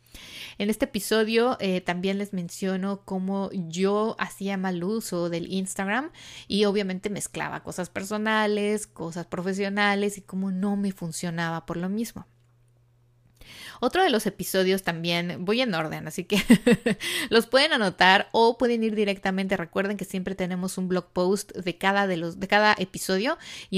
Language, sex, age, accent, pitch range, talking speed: Spanish, female, 30-49, Mexican, 180-210 Hz, 155 wpm